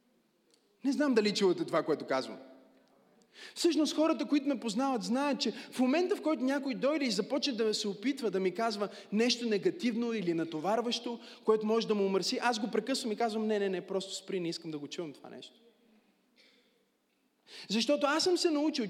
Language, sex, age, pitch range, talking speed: Bulgarian, male, 30-49, 225-295 Hz, 185 wpm